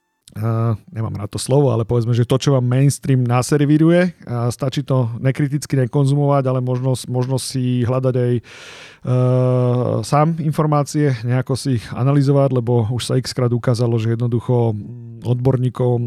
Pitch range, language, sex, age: 115-140 Hz, Slovak, male, 40-59